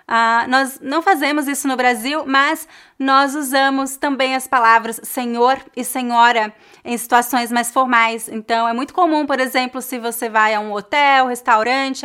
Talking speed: 160 wpm